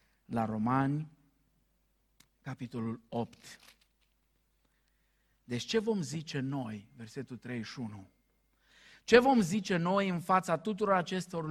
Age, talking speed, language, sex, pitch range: 50-69, 100 wpm, Romanian, male, 150-210 Hz